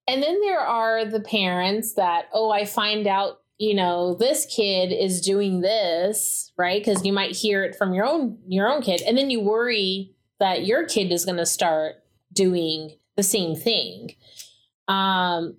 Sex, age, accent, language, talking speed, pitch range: female, 30-49, American, English, 175 wpm, 175-215 Hz